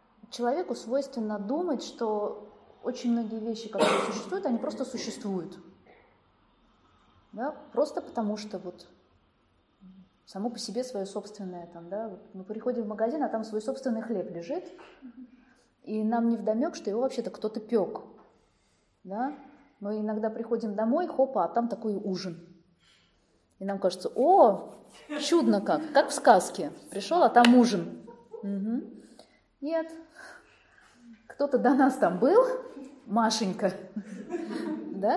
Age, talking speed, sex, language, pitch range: 20-39, 130 wpm, female, Russian, 200-255 Hz